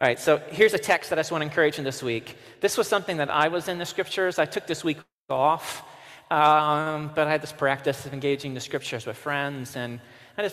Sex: male